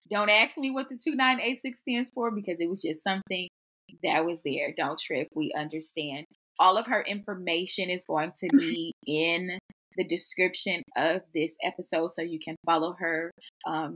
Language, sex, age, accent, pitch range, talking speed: English, female, 20-39, American, 165-205 Hz, 170 wpm